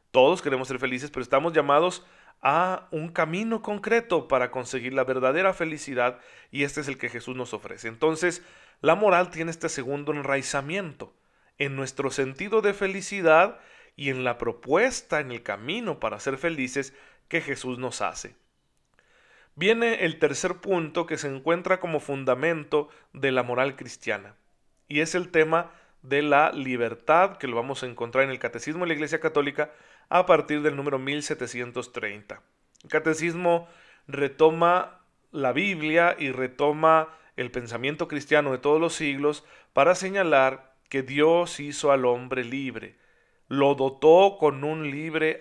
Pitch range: 130-165 Hz